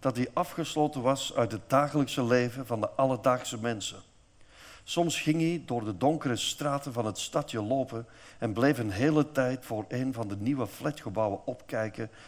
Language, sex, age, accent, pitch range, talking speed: Dutch, male, 50-69, Dutch, 105-130 Hz, 170 wpm